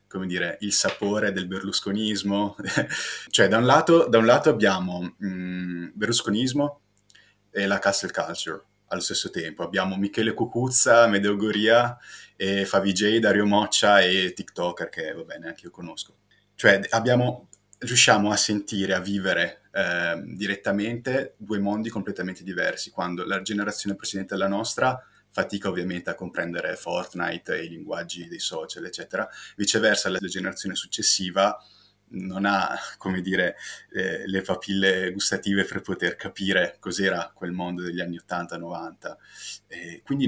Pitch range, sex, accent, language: 95-105 Hz, male, native, Italian